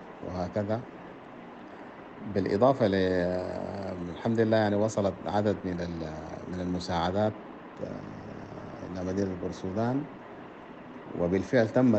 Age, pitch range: 50-69, 85-105 Hz